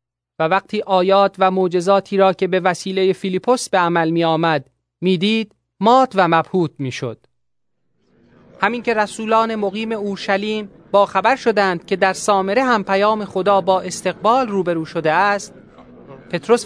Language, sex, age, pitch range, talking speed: Persian, male, 30-49, 165-205 Hz, 140 wpm